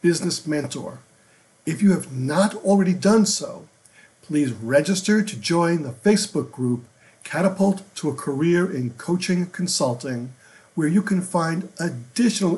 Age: 50-69